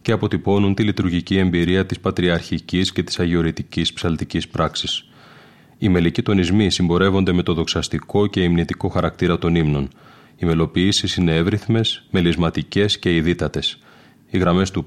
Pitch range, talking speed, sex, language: 85-100 Hz, 135 wpm, male, Greek